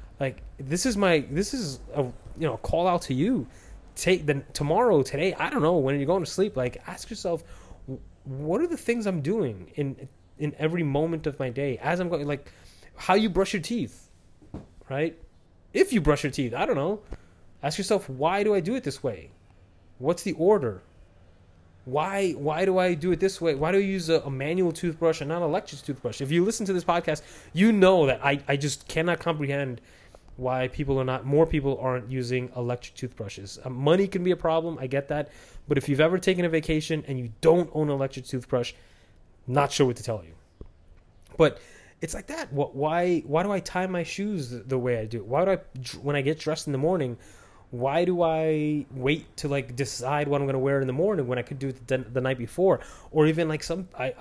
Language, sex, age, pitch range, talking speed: English, male, 20-39, 125-165 Hz, 220 wpm